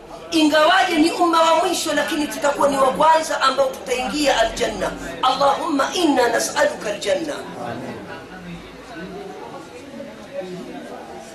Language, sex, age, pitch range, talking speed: Swahili, female, 40-59, 280-335 Hz, 80 wpm